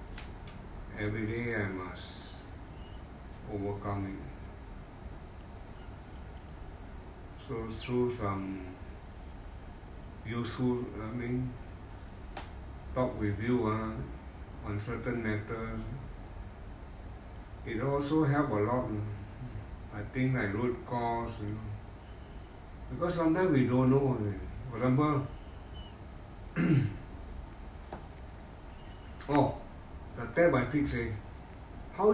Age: 60-79